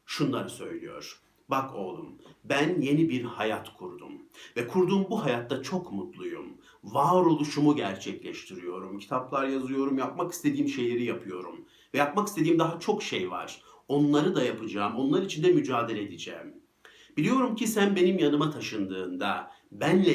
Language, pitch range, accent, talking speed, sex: Turkish, 130-180 Hz, native, 135 wpm, male